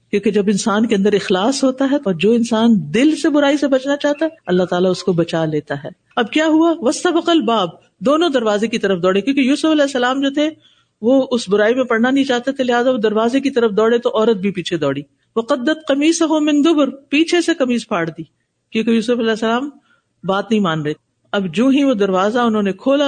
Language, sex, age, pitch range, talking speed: Urdu, female, 50-69, 190-275 Hz, 225 wpm